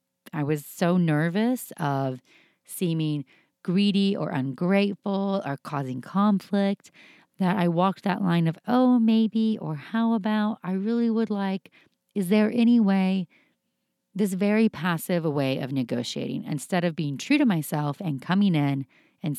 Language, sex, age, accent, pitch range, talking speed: English, female, 30-49, American, 145-200 Hz, 145 wpm